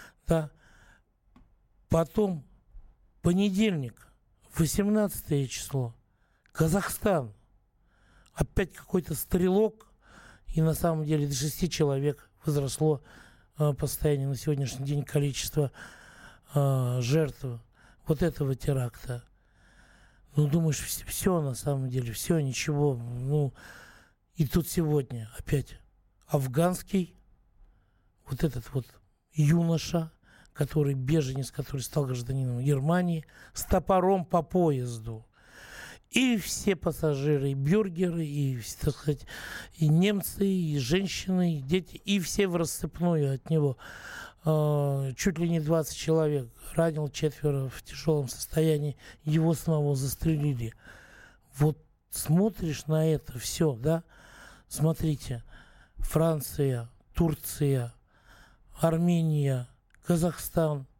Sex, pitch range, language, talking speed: male, 130-165 Hz, Russian, 100 wpm